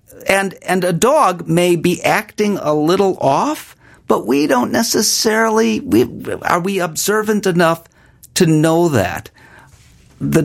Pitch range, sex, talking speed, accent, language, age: 135-195 Hz, male, 130 wpm, American, English, 50-69